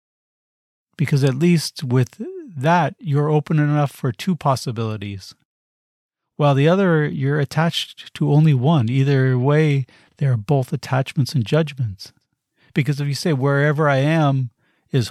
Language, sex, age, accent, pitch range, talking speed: English, male, 50-69, American, 130-155 Hz, 140 wpm